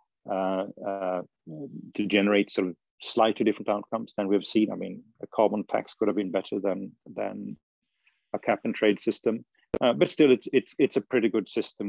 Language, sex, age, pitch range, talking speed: English, male, 40-59, 95-105 Hz, 195 wpm